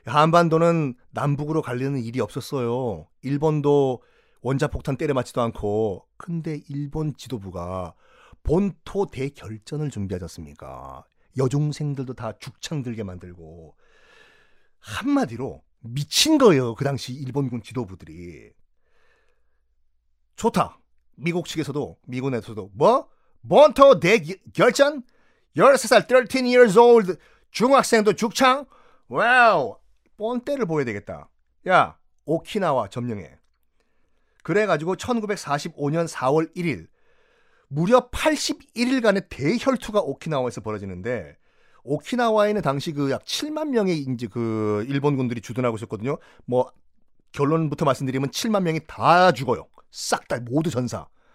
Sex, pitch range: male, 120-185 Hz